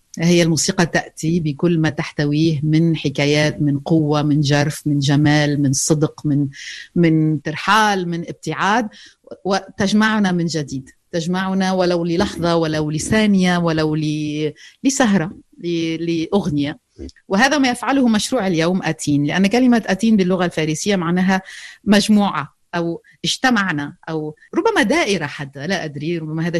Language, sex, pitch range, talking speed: Arabic, female, 155-195 Hz, 125 wpm